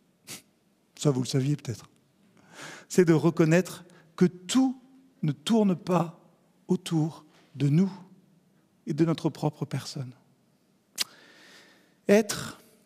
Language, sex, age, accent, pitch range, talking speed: French, male, 50-69, French, 165-210 Hz, 105 wpm